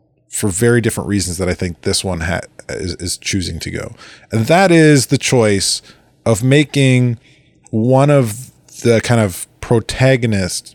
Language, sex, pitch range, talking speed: English, male, 110-145 Hz, 155 wpm